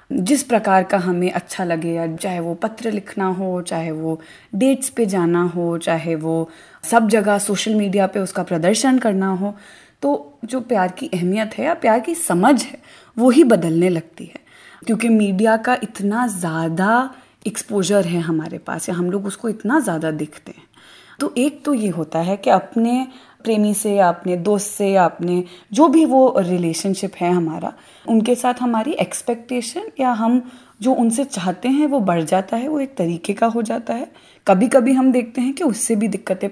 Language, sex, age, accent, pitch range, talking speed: Hindi, female, 20-39, native, 180-245 Hz, 180 wpm